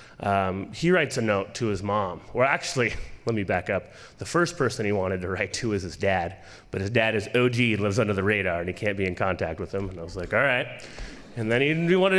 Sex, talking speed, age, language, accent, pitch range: male, 255 wpm, 30-49, English, American, 100-145 Hz